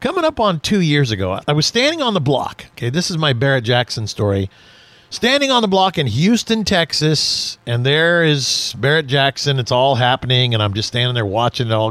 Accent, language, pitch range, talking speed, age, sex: American, English, 130-190 Hz, 210 wpm, 40-59, male